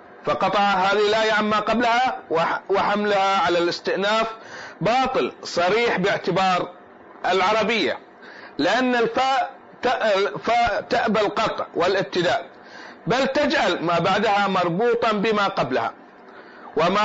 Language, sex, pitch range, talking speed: Arabic, male, 195-240 Hz, 90 wpm